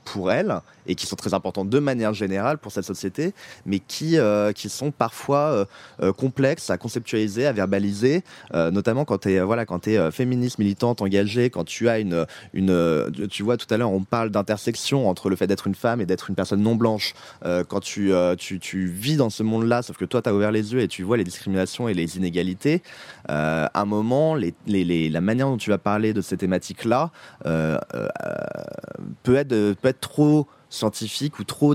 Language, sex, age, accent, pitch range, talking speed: French, male, 20-39, French, 100-130 Hz, 210 wpm